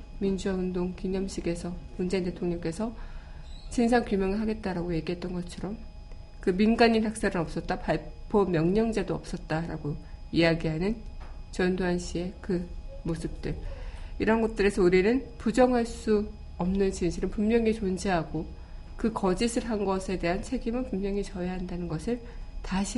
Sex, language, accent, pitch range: female, Korean, native, 165-205 Hz